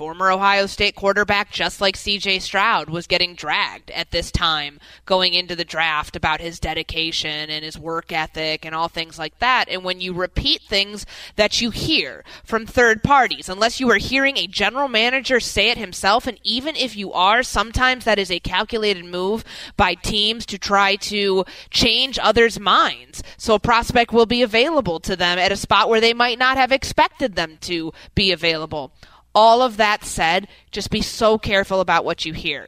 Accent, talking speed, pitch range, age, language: American, 190 wpm, 165-210 Hz, 20-39, English